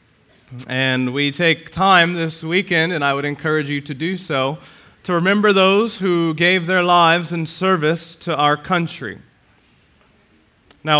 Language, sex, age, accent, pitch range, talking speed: English, male, 30-49, American, 115-165 Hz, 145 wpm